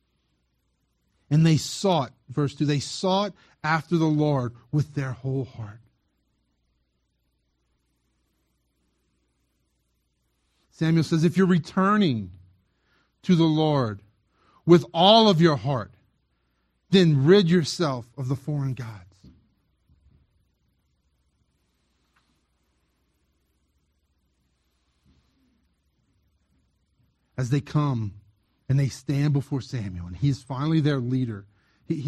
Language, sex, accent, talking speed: English, male, American, 90 wpm